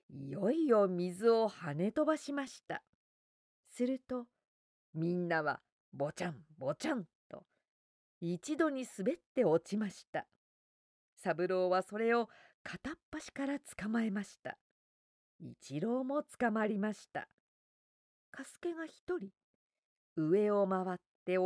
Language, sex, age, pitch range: Japanese, female, 40-59, 180-265 Hz